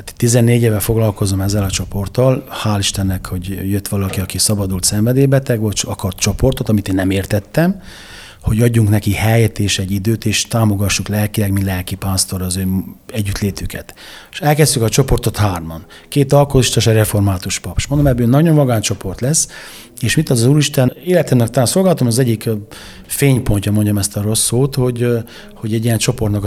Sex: male